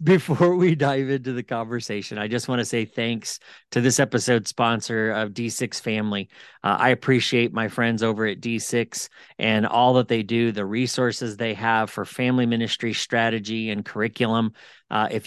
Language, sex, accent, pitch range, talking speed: English, male, American, 110-135 Hz, 175 wpm